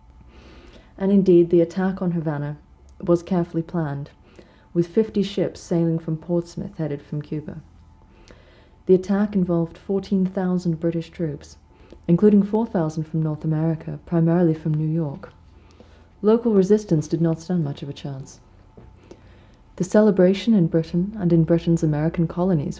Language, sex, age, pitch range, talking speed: English, female, 30-49, 155-175 Hz, 135 wpm